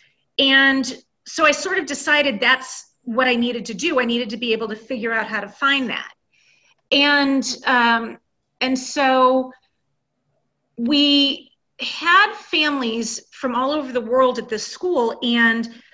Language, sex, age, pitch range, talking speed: English, female, 30-49, 230-275 Hz, 150 wpm